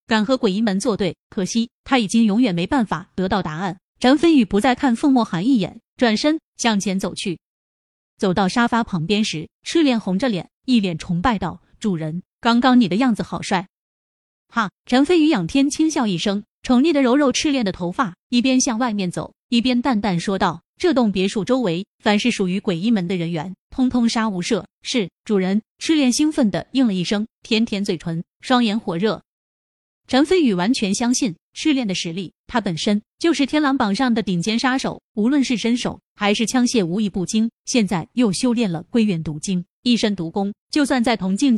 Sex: female